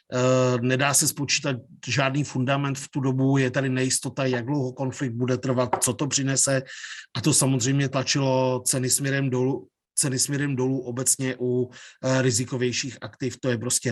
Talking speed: 155 wpm